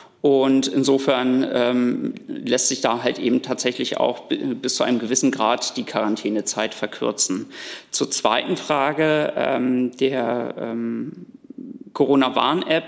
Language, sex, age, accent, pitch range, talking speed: German, male, 40-59, German, 130-155 Hz, 120 wpm